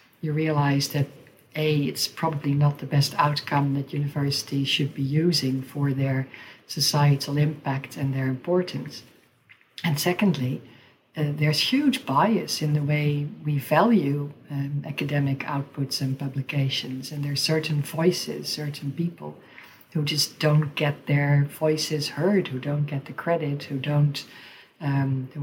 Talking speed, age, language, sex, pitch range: 140 wpm, 60-79, English, female, 140-155 Hz